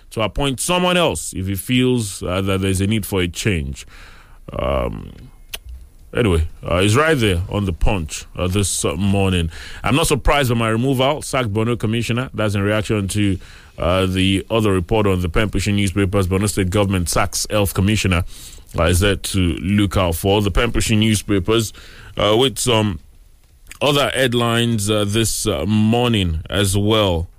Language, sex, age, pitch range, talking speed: English, male, 30-49, 90-110 Hz, 165 wpm